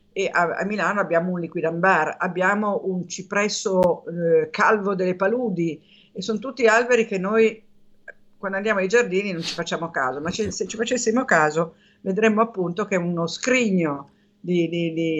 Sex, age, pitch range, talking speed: female, 50-69, 170-215 Hz, 170 wpm